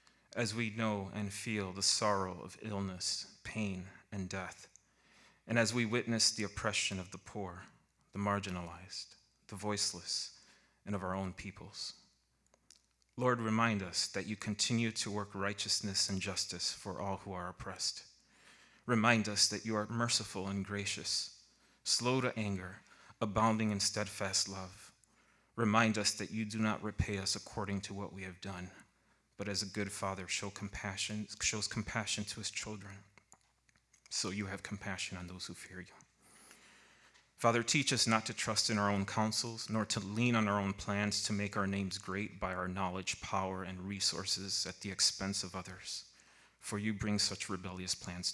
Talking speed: 170 wpm